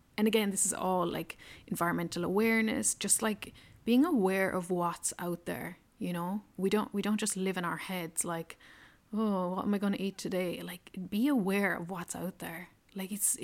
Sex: female